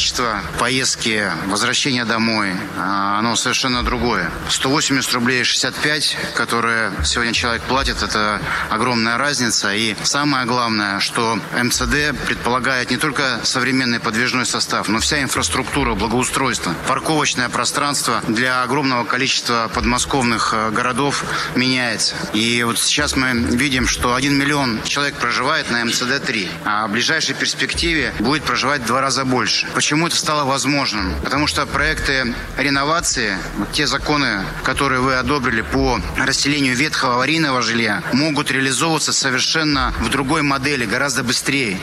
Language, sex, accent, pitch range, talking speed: Russian, male, native, 120-140 Hz, 130 wpm